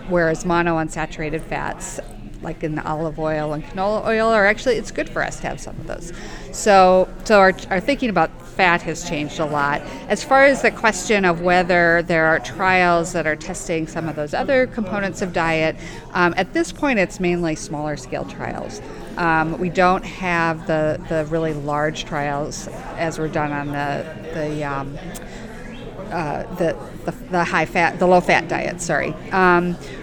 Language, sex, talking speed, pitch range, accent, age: English, female, 180 wpm, 155-190 Hz, American, 50-69